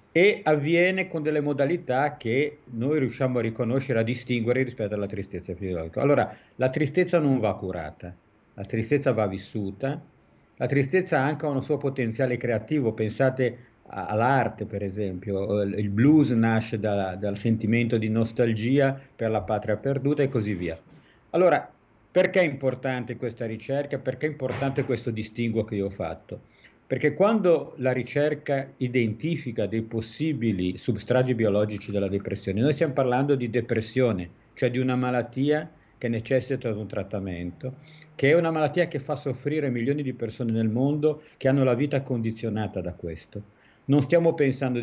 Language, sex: Italian, male